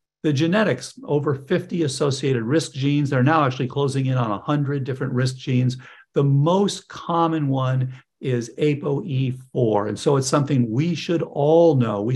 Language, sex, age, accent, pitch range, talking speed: English, male, 50-69, American, 125-155 Hz, 170 wpm